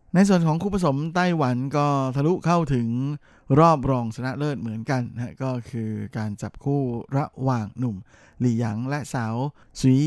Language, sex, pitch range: Thai, male, 110-135 Hz